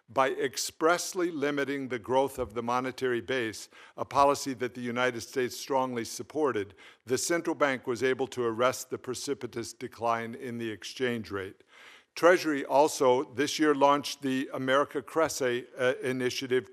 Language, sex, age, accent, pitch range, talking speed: English, male, 50-69, American, 120-140 Hz, 145 wpm